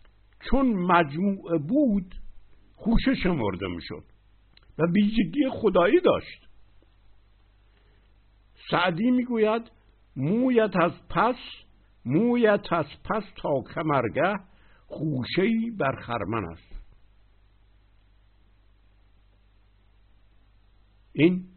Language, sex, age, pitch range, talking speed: Persian, male, 60-79, 100-130 Hz, 70 wpm